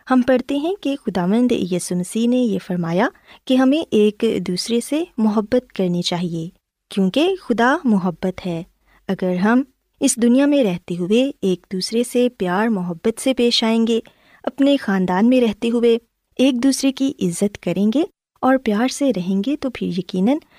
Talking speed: 165 wpm